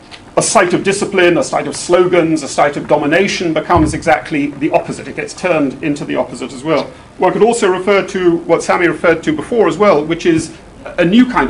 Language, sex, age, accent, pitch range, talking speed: English, male, 40-59, British, 145-190 Hz, 215 wpm